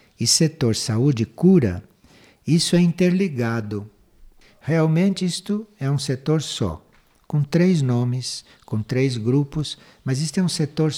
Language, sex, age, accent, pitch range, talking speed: Portuguese, male, 60-79, Brazilian, 115-160 Hz, 135 wpm